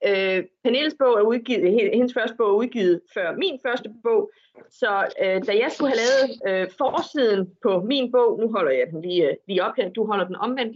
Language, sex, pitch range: Danish, female, 205-305 Hz